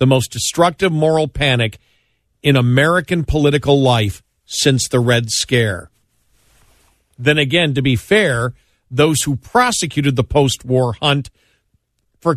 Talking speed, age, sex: 120 wpm, 50-69, male